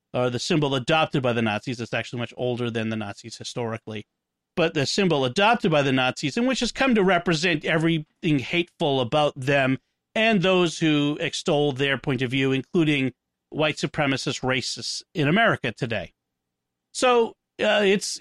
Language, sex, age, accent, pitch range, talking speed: English, male, 40-59, American, 130-195 Hz, 165 wpm